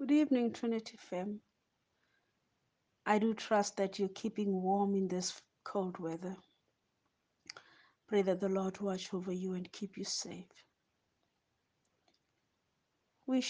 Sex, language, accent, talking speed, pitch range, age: female, English, South African, 120 wpm, 195-230 Hz, 50-69